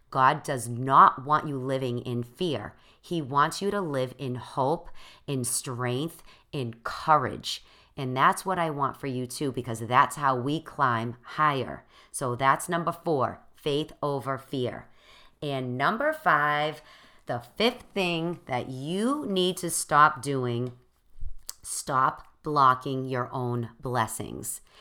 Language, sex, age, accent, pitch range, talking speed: English, female, 40-59, American, 125-155 Hz, 140 wpm